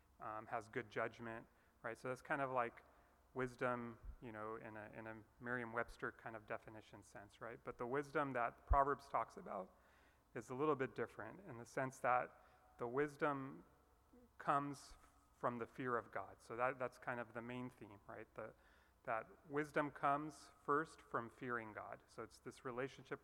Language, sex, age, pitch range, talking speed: English, male, 30-49, 110-130 Hz, 180 wpm